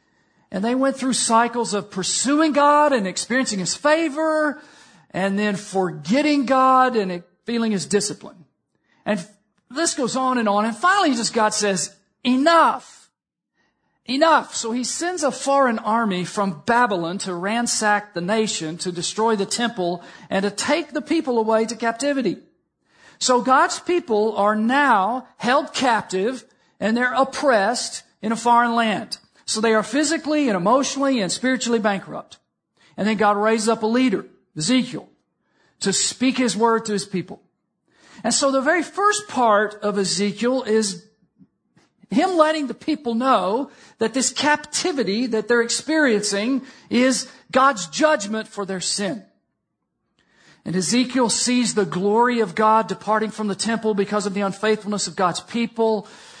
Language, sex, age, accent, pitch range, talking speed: English, male, 50-69, American, 205-260 Hz, 150 wpm